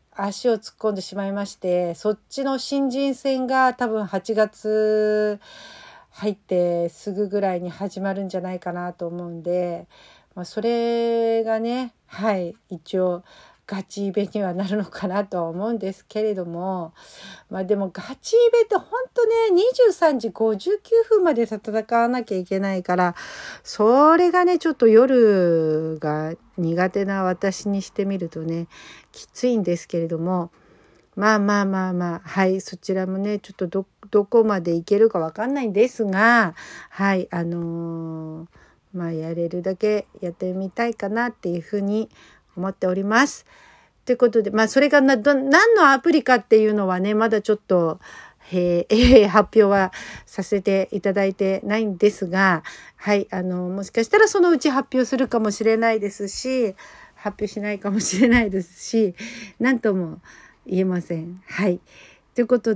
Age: 50-69